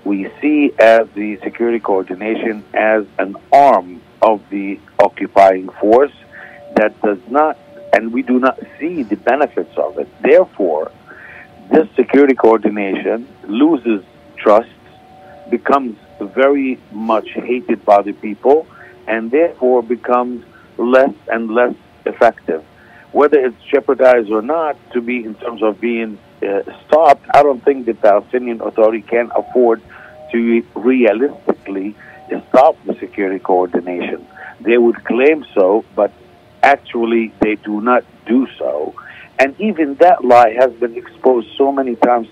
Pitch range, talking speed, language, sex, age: 110-135 Hz, 135 wpm, Hebrew, male, 50-69